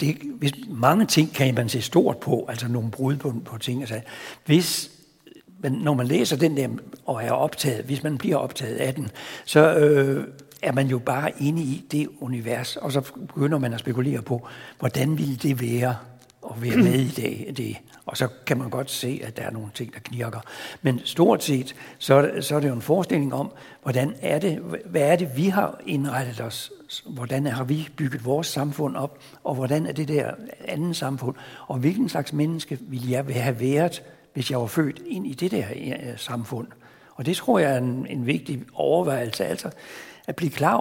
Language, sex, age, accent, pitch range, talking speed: Danish, male, 60-79, native, 125-150 Hz, 200 wpm